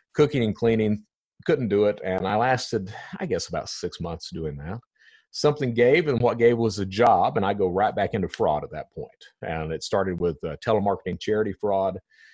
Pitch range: 100-155 Hz